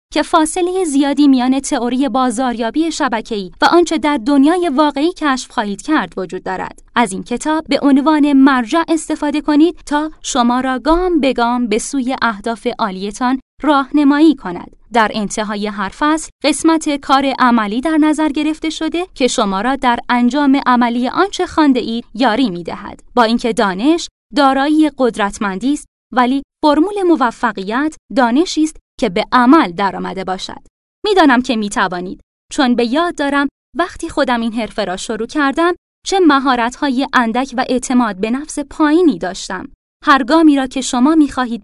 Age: 20-39